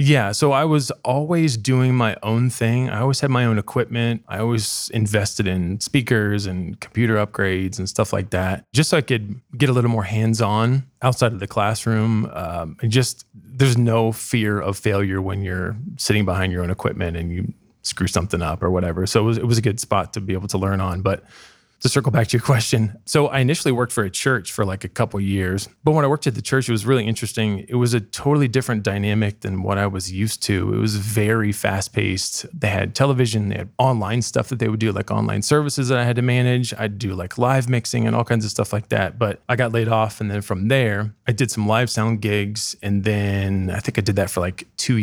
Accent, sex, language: American, male, English